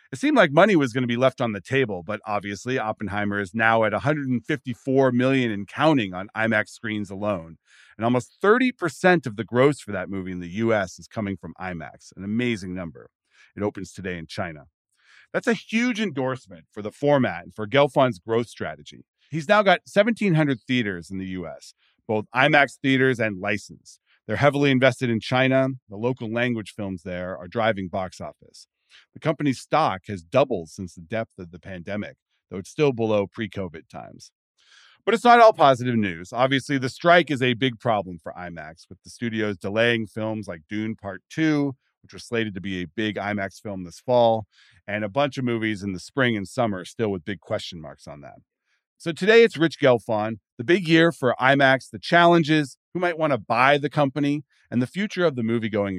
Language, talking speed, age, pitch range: English, 195 wpm, 40-59, 100-135 Hz